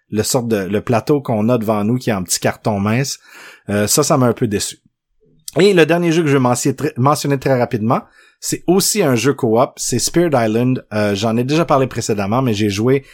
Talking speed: 220 wpm